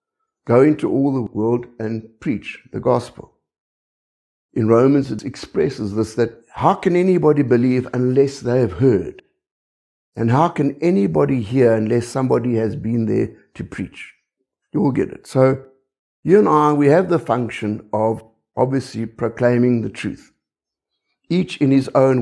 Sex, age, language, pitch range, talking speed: male, 60-79, English, 110-135 Hz, 150 wpm